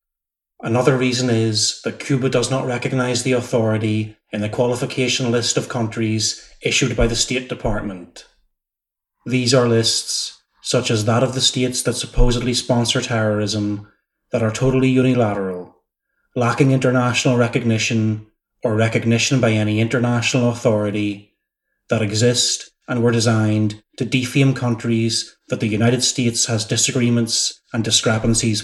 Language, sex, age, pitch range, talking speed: English, male, 30-49, 110-125 Hz, 130 wpm